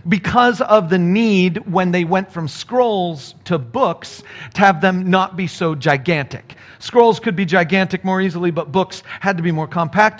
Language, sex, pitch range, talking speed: English, male, 165-220 Hz, 180 wpm